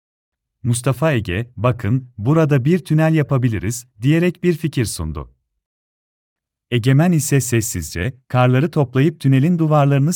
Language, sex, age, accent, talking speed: Turkish, male, 40-59, native, 105 wpm